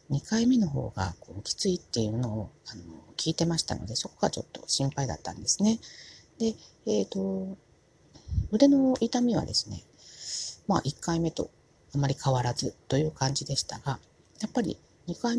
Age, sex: 40-59, female